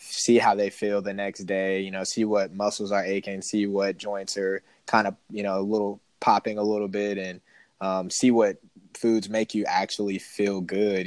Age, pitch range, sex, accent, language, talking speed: 20-39, 95-105 Hz, male, American, English, 205 wpm